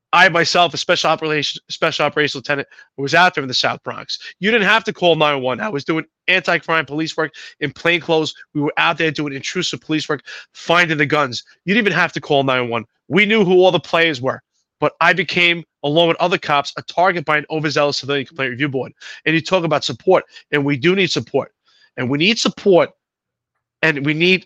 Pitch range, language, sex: 140-175 Hz, English, male